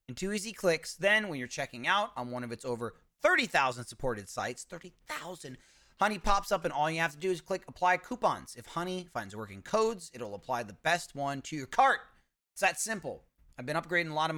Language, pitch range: English, 150-215 Hz